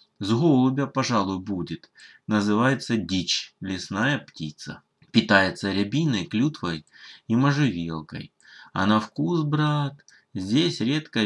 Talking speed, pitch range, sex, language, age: 100 wpm, 95-130 Hz, male, Russian, 20-39